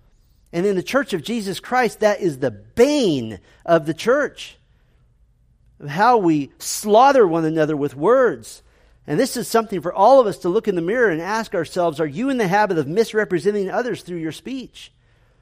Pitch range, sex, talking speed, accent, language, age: 130-205 Hz, male, 185 wpm, American, English, 50-69